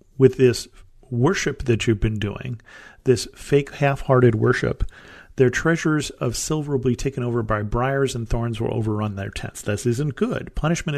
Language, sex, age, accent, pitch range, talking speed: English, male, 40-59, American, 110-140 Hz, 170 wpm